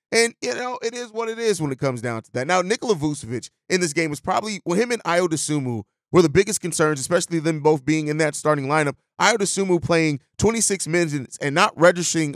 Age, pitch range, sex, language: 30-49, 145-180 Hz, male, English